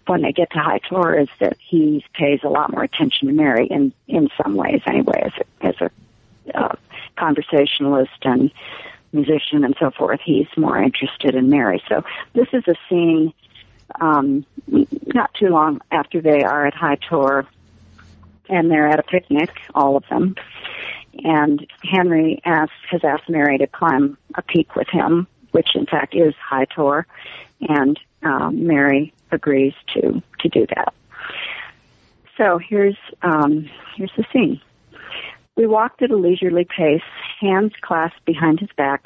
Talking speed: 160 wpm